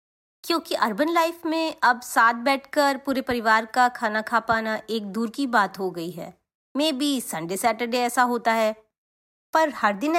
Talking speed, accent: 175 wpm, native